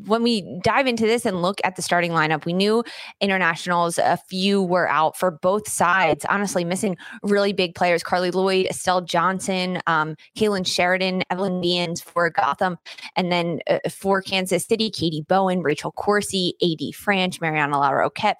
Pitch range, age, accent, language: 165-205 Hz, 20-39, American, English